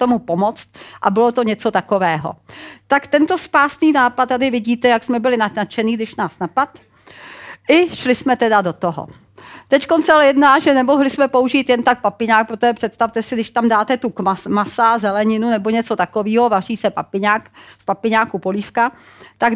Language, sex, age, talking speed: Czech, female, 40-59, 170 wpm